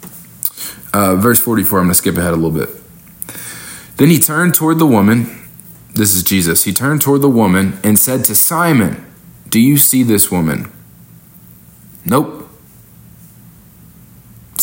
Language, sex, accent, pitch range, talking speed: English, male, American, 90-130 Hz, 145 wpm